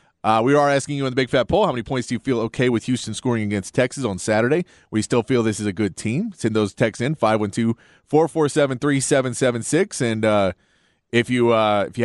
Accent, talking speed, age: American, 215 wpm, 30-49